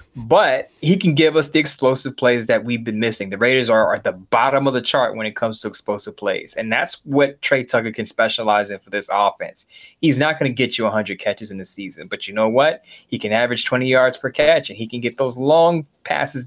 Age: 20-39